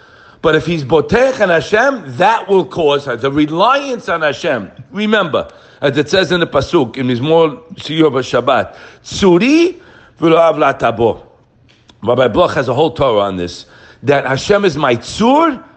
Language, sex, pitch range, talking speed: English, male, 120-200 Hz, 155 wpm